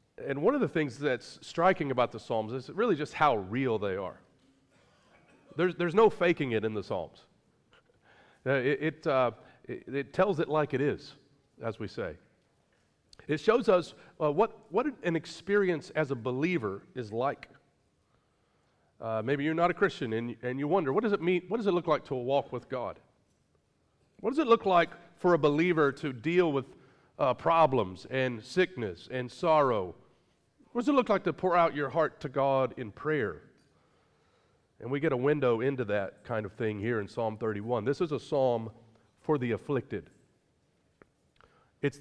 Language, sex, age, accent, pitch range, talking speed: English, male, 40-59, American, 120-165 Hz, 180 wpm